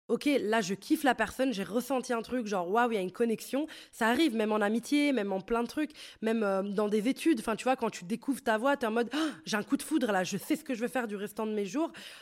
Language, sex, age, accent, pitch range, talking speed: French, female, 20-39, French, 215-270 Hz, 300 wpm